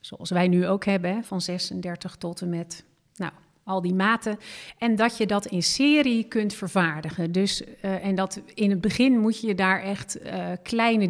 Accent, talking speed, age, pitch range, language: Dutch, 195 wpm, 40-59, 185-225 Hz, Dutch